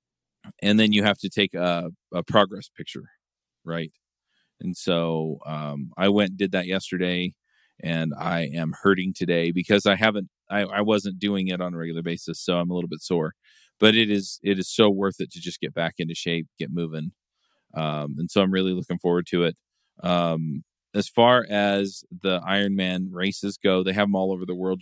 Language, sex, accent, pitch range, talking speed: English, male, American, 85-100 Hz, 200 wpm